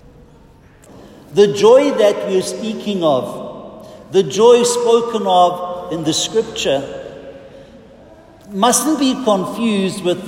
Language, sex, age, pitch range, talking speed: English, male, 50-69, 165-210 Hz, 105 wpm